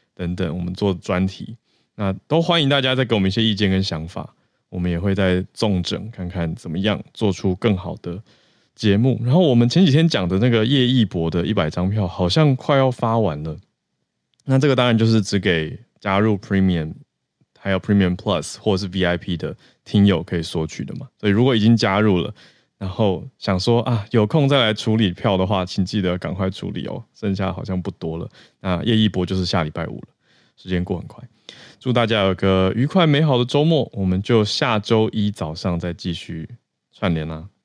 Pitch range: 95-120 Hz